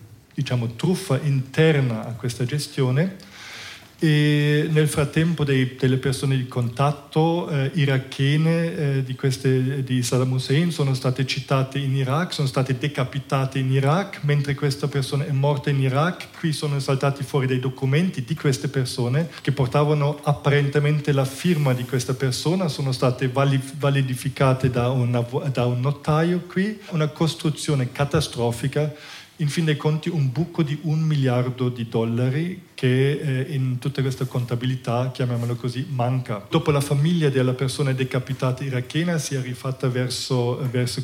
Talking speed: 140 wpm